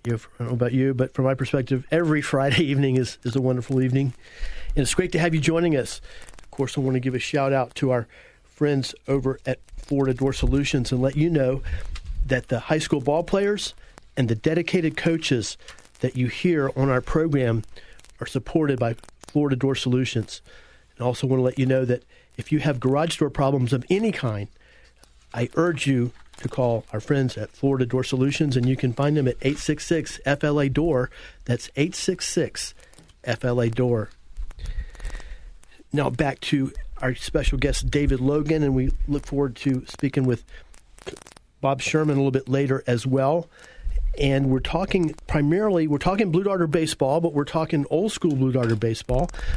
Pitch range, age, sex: 130-155 Hz, 40-59, male